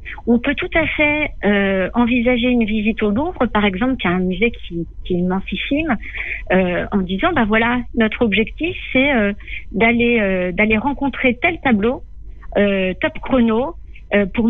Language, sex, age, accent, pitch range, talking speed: French, female, 50-69, French, 185-235 Hz, 175 wpm